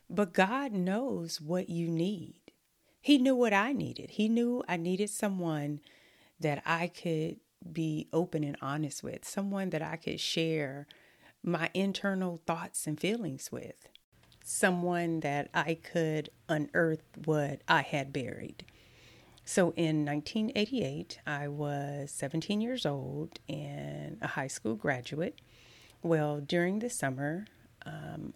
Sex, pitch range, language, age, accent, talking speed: female, 150-185 Hz, English, 40-59, American, 130 wpm